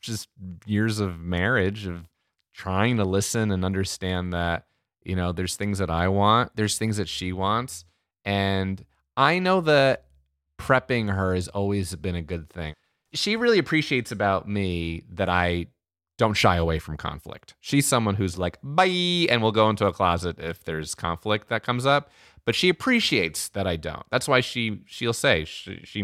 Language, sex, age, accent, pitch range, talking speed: English, male, 30-49, American, 85-120 Hz, 175 wpm